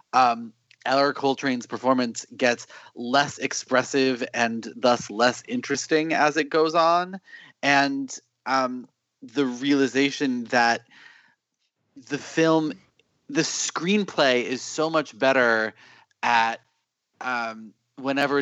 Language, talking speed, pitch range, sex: English, 100 wpm, 115-155 Hz, male